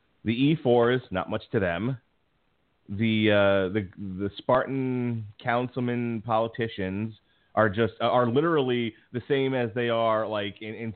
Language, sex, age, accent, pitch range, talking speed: English, male, 30-49, American, 105-145 Hz, 135 wpm